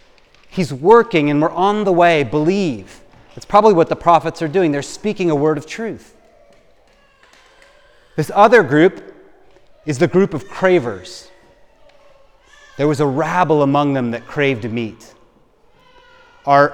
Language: English